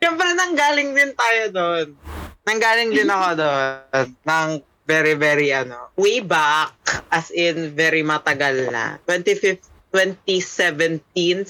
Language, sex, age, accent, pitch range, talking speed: Filipino, female, 20-39, native, 160-225 Hz, 115 wpm